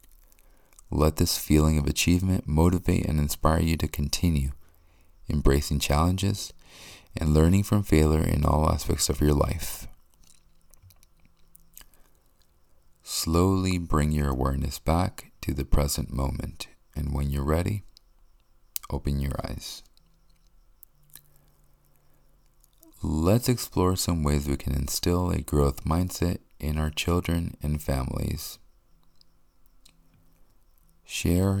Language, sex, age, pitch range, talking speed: English, male, 40-59, 75-90 Hz, 105 wpm